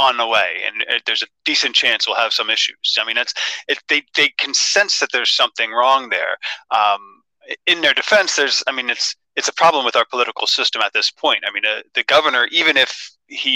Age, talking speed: 30-49, 225 wpm